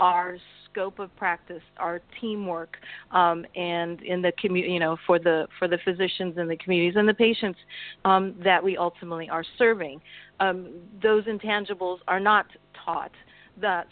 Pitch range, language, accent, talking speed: 175-210 Hz, English, American, 160 wpm